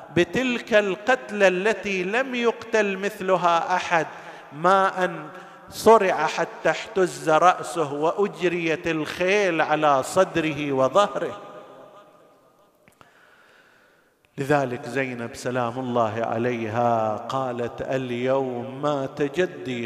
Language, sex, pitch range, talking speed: Arabic, male, 160-200 Hz, 80 wpm